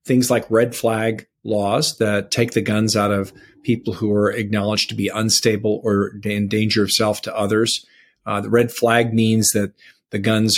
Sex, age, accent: male, 40-59, American